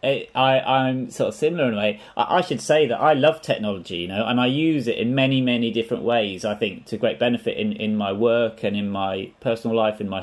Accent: British